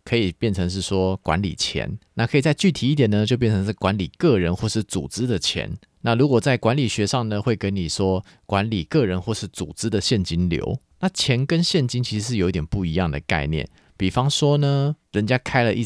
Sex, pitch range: male, 90-115 Hz